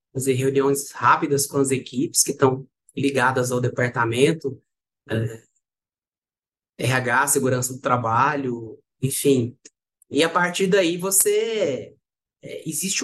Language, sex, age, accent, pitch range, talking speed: Portuguese, male, 20-39, Brazilian, 140-165 Hz, 110 wpm